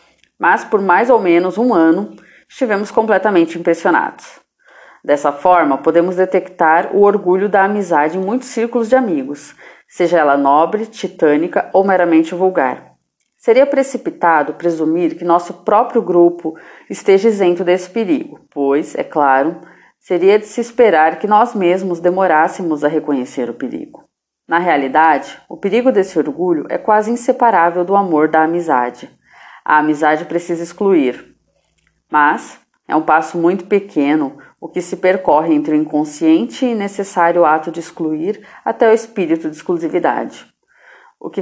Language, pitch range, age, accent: Portuguese, 160-200 Hz, 30-49, Brazilian